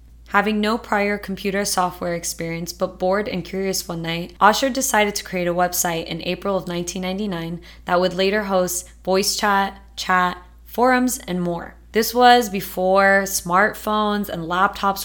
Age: 20-39